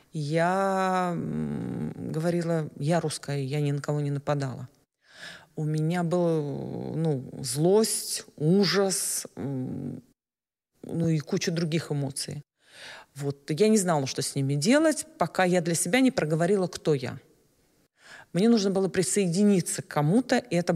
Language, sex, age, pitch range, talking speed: Ukrainian, female, 40-59, 145-185 Hz, 130 wpm